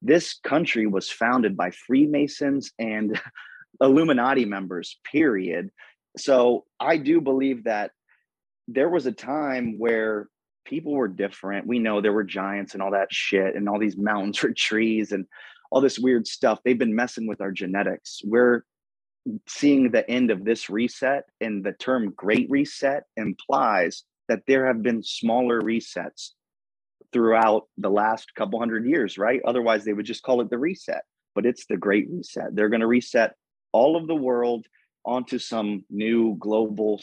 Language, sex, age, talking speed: English, male, 30-49, 160 wpm